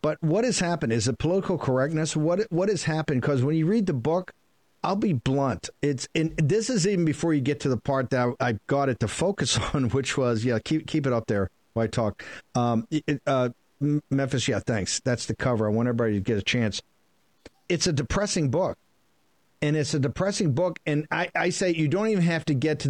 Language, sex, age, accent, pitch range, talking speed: English, male, 50-69, American, 125-160 Hz, 225 wpm